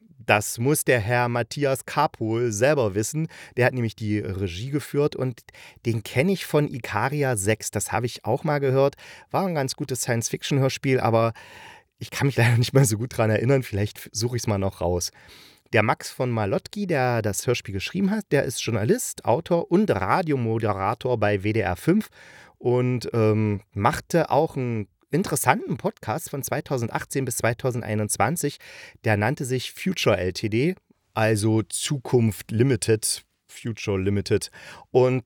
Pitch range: 105-135 Hz